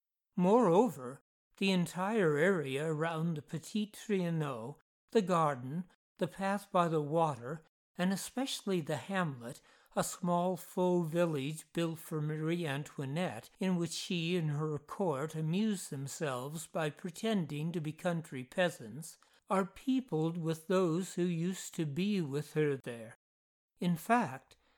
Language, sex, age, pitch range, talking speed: English, male, 60-79, 155-185 Hz, 130 wpm